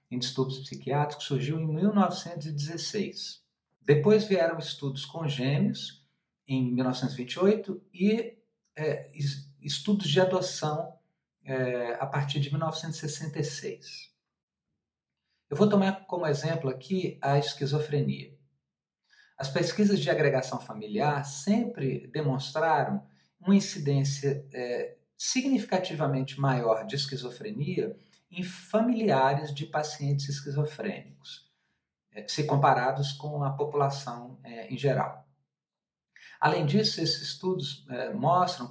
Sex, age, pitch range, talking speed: male, 50-69, 135-180 Hz, 90 wpm